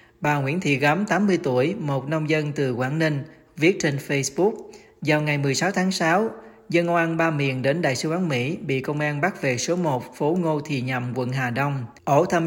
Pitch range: 135-165 Hz